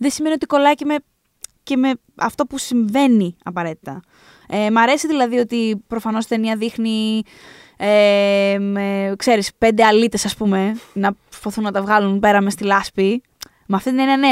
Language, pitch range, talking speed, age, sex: Greek, 200-260 Hz, 175 wpm, 20-39, female